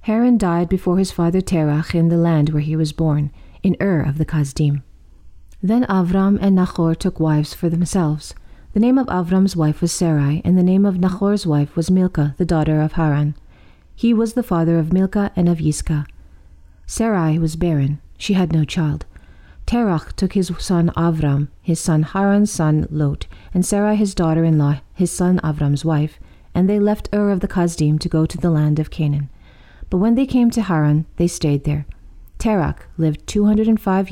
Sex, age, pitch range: female, 40-59, 150-190 Hz